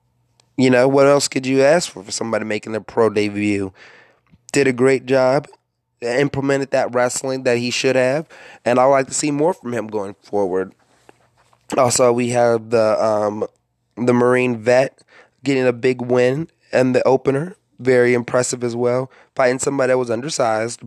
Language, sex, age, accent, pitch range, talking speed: English, male, 20-39, American, 115-135 Hz, 170 wpm